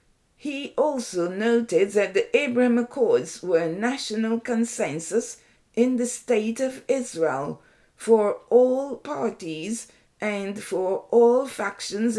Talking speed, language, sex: 115 wpm, English, female